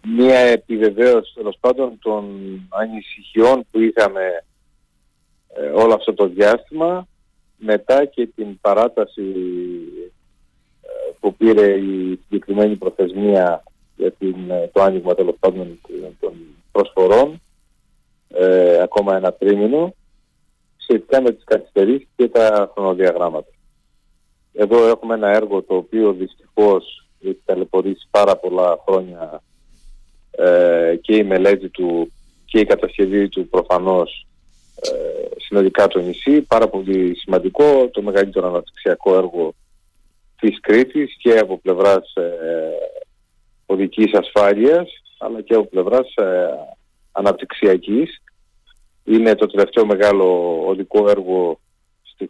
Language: Greek